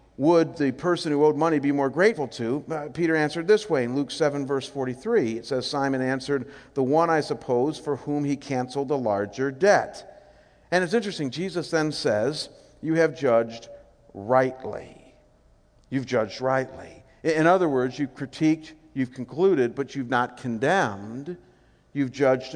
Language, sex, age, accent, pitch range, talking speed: English, male, 50-69, American, 120-155 Hz, 160 wpm